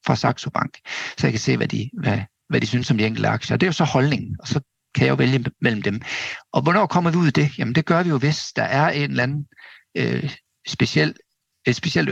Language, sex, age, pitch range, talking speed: Danish, male, 50-69, 115-155 Hz, 250 wpm